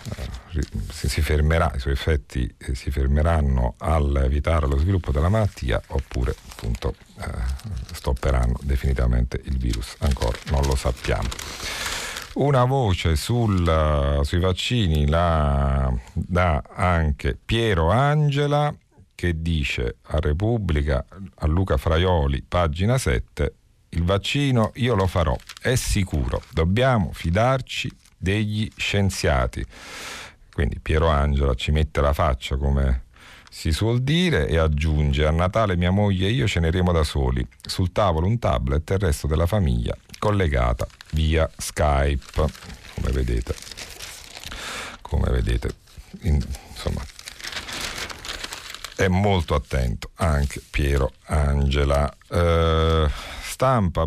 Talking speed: 115 wpm